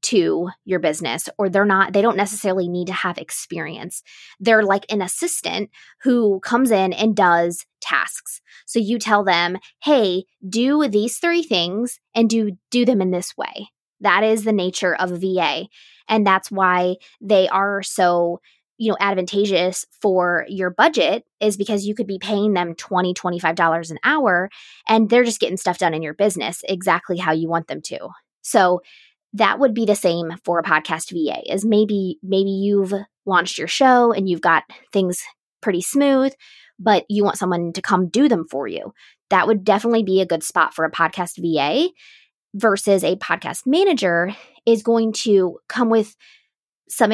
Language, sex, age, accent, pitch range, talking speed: English, female, 20-39, American, 180-225 Hz, 175 wpm